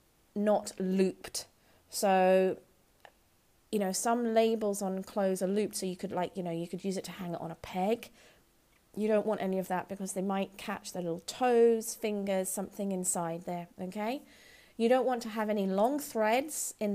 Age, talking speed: 30-49, 190 wpm